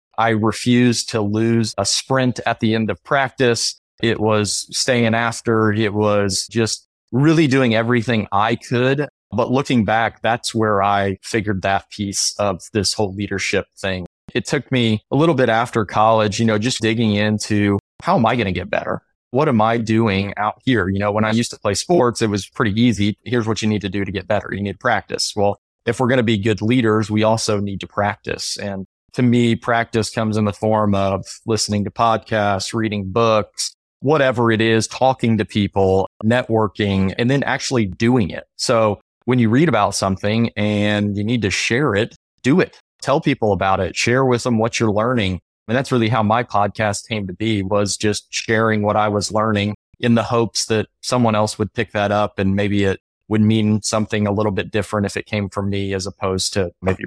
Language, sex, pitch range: English, male, 100-115 Hz